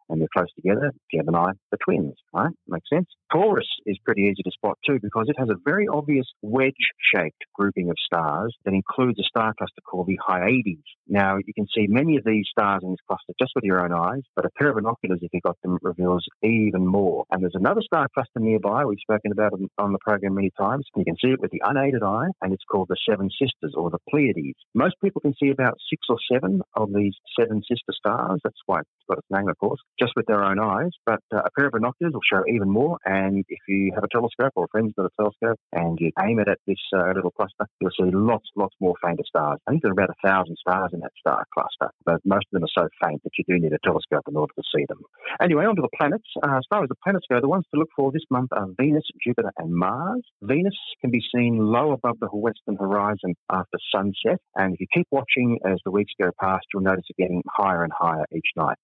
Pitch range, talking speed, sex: 95-130 Hz, 250 wpm, male